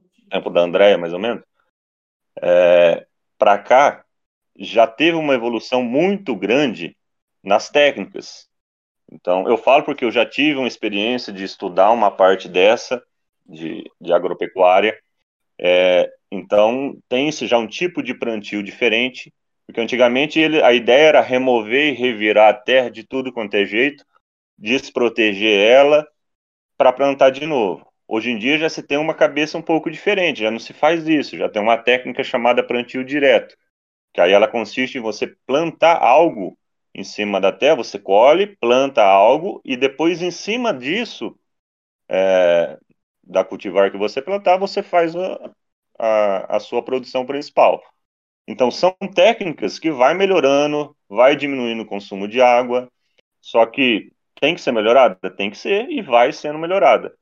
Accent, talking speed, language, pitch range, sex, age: Brazilian, 150 wpm, Portuguese, 110-155 Hz, male, 30-49